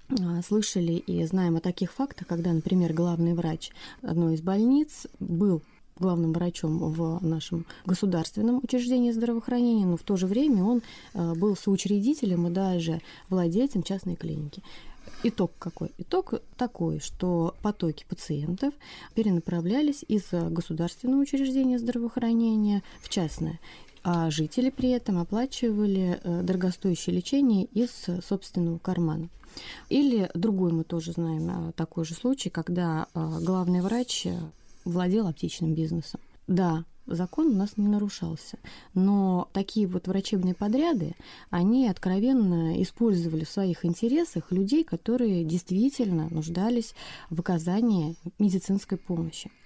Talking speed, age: 115 wpm, 20-39